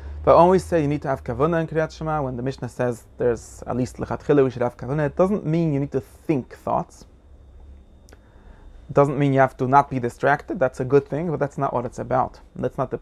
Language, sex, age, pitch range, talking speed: Hebrew, male, 30-49, 100-145 Hz, 245 wpm